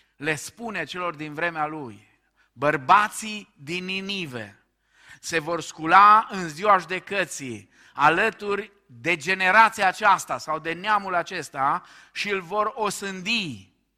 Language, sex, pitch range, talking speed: Romanian, male, 125-175 Hz, 115 wpm